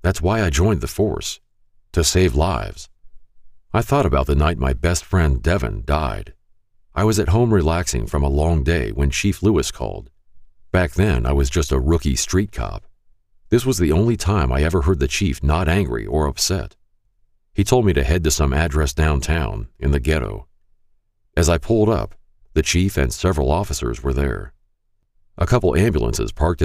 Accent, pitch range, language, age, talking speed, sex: American, 70-100 Hz, English, 50-69, 185 wpm, male